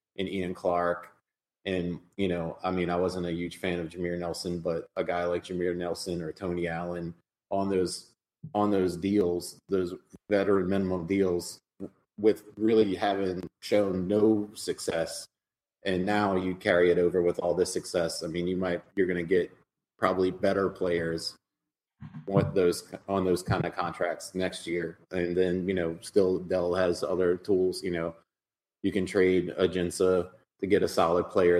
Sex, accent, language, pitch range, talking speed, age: male, American, English, 85-95 Hz, 170 wpm, 30-49